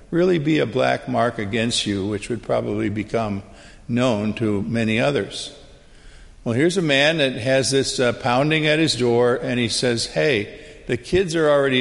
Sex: male